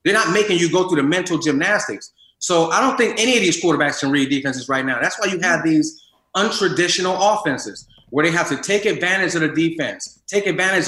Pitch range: 165-225 Hz